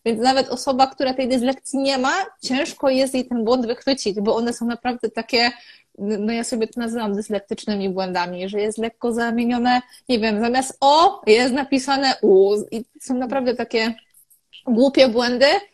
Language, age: Polish, 20-39